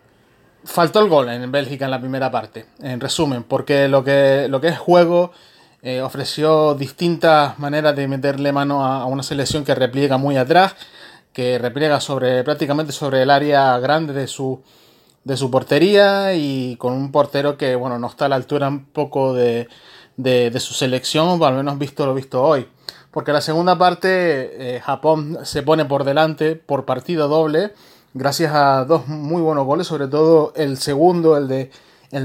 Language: Spanish